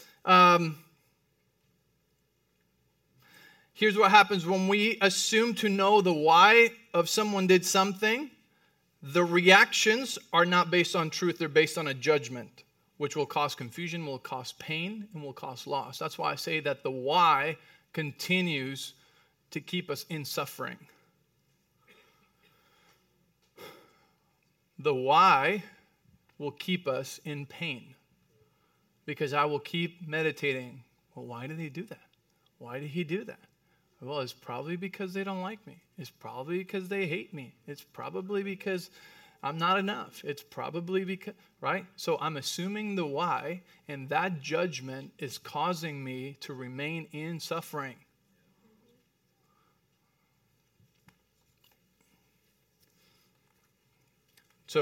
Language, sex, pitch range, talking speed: English, male, 145-195 Hz, 125 wpm